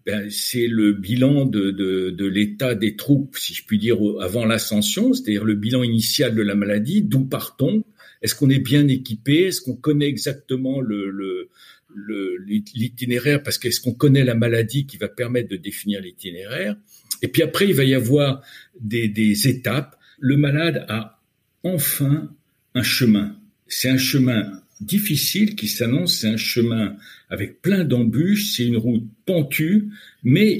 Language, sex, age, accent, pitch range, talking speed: French, male, 60-79, French, 110-155 Hz, 160 wpm